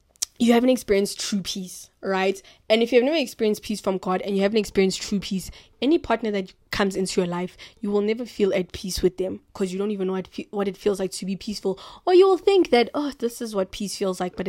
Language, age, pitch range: English, 20-39, 190-220 Hz